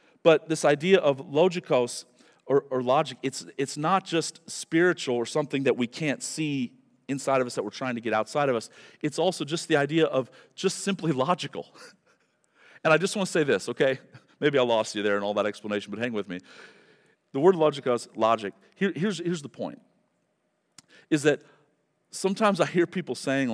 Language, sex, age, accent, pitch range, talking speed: English, male, 40-59, American, 125-170 Hz, 190 wpm